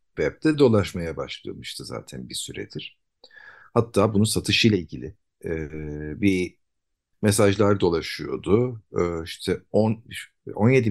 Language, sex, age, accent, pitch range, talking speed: Turkish, male, 50-69, native, 90-125 Hz, 105 wpm